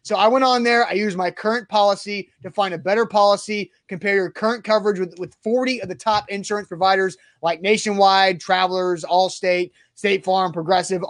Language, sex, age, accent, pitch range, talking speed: English, male, 30-49, American, 185-225 Hz, 185 wpm